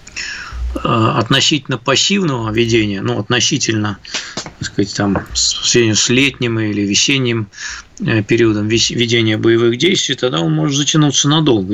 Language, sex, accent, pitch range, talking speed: Russian, male, native, 115-130 Hz, 100 wpm